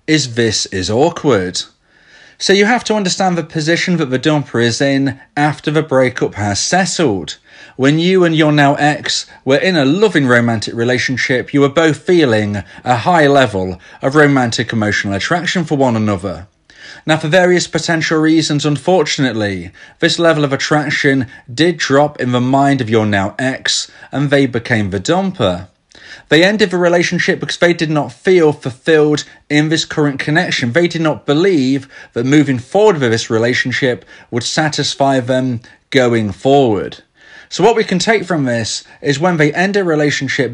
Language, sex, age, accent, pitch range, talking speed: English, male, 30-49, British, 125-170 Hz, 165 wpm